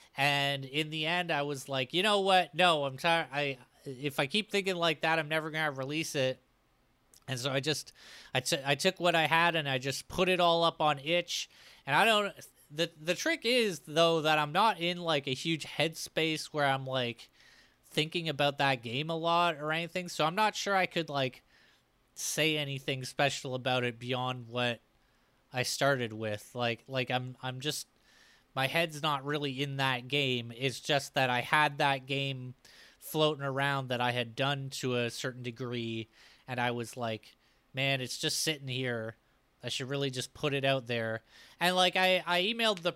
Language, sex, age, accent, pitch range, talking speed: English, male, 20-39, American, 125-155 Hz, 195 wpm